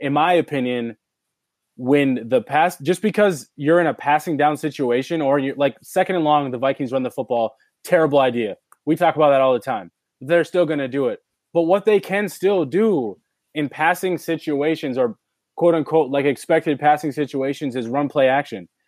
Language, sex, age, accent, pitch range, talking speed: English, male, 20-39, American, 140-175 Hz, 190 wpm